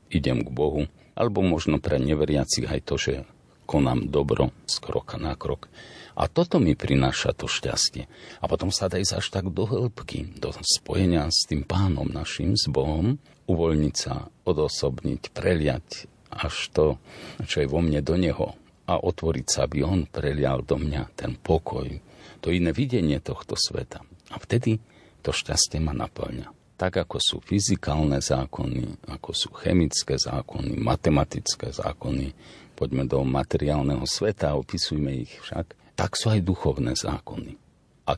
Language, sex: Slovak, male